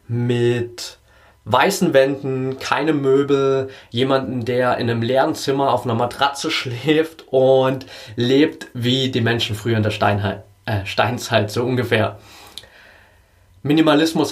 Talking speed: 115 wpm